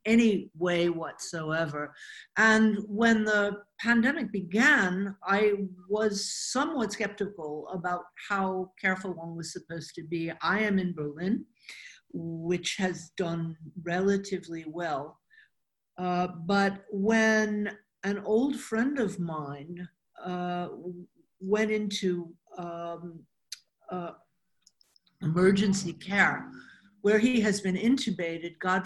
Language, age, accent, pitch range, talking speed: English, 50-69, American, 170-210 Hz, 105 wpm